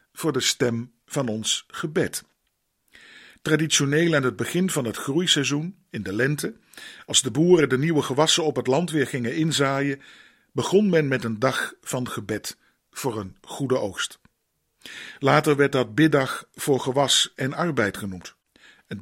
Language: Dutch